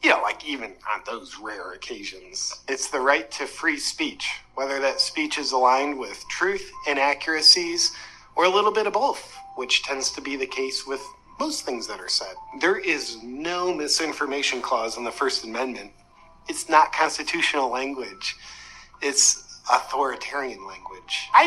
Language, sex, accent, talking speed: English, male, American, 155 wpm